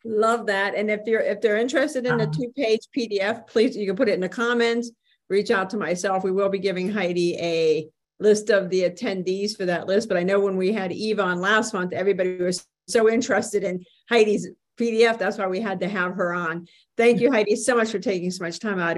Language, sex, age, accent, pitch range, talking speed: English, female, 50-69, American, 185-220 Hz, 235 wpm